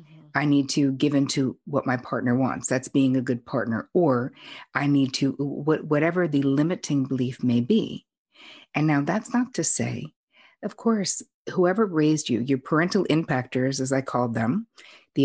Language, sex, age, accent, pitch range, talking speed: English, female, 50-69, American, 135-180 Hz, 175 wpm